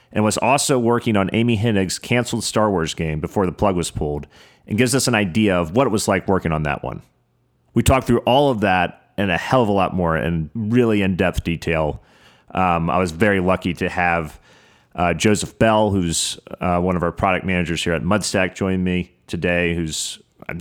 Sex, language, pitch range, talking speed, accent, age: male, English, 85-110 Hz, 210 wpm, American, 30-49